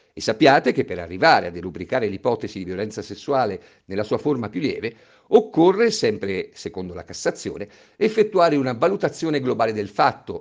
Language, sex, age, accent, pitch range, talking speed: Italian, male, 50-69, native, 105-145 Hz, 155 wpm